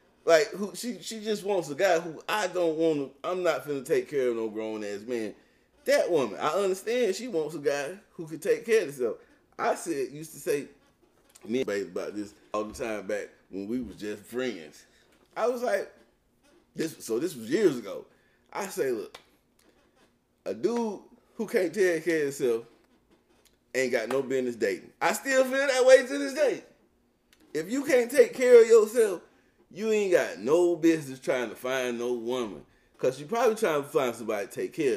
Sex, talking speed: male, 195 wpm